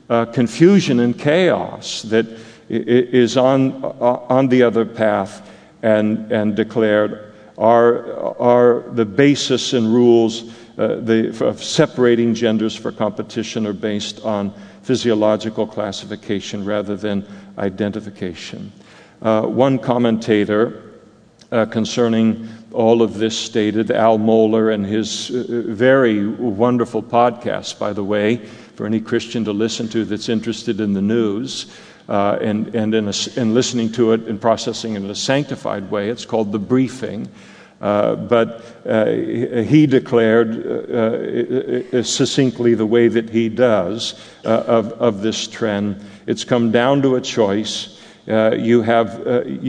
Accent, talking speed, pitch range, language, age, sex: American, 140 wpm, 105-120 Hz, English, 50-69, male